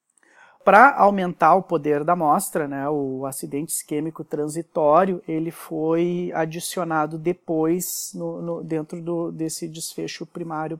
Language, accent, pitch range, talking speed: Portuguese, Brazilian, 160-180 Hz, 120 wpm